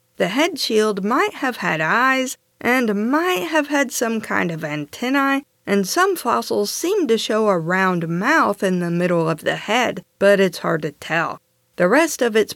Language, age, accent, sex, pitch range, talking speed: English, 50-69, American, female, 180-255 Hz, 185 wpm